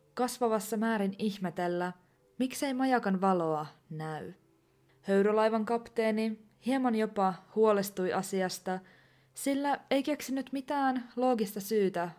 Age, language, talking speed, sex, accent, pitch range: 20-39, Finnish, 95 wpm, female, native, 180-230 Hz